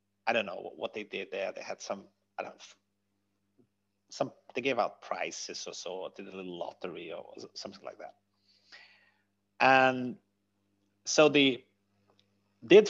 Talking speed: 145 wpm